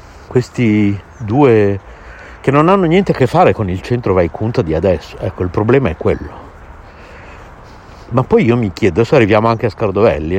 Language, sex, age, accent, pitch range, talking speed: Italian, male, 60-79, native, 95-120 Hz, 175 wpm